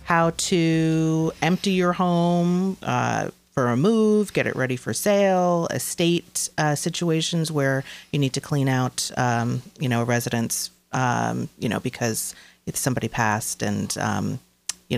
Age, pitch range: 30-49, 125-160 Hz